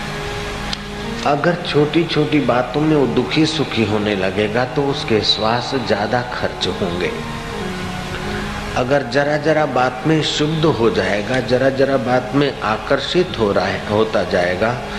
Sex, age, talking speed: male, 50-69, 120 wpm